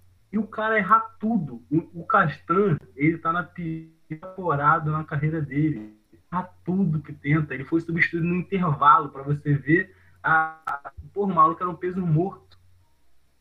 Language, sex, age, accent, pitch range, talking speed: Portuguese, male, 20-39, Brazilian, 115-195 Hz, 155 wpm